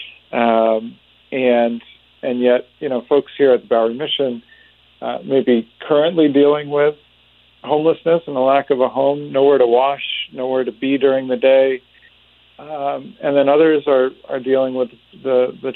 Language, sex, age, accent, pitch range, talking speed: English, male, 50-69, American, 115-135 Hz, 165 wpm